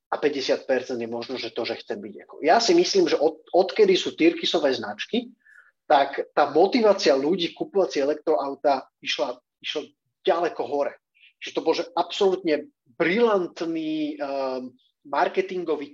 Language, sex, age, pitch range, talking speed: Slovak, male, 30-49, 140-185 Hz, 135 wpm